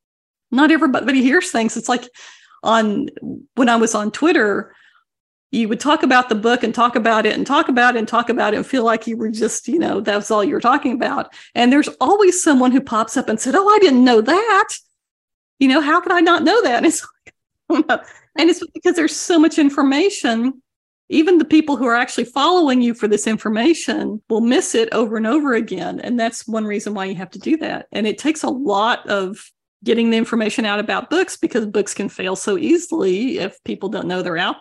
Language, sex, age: English, female, 40-59